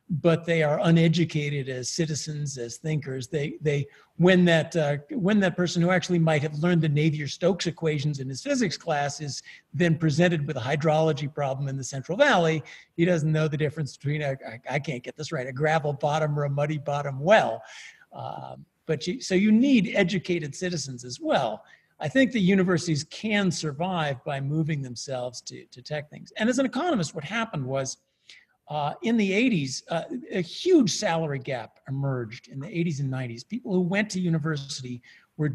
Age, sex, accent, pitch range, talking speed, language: 50-69, male, American, 140-175 Hz, 185 wpm, English